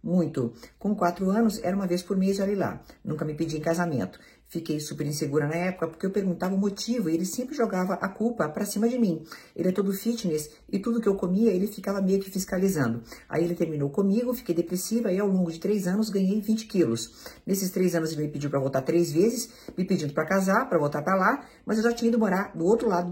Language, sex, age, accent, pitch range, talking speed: Portuguese, female, 50-69, Brazilian, 165-220 Hz, 240 wpm